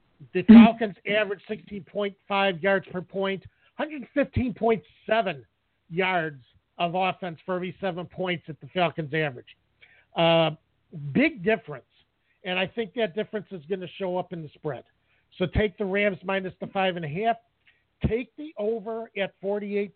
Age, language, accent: 50-69, English, American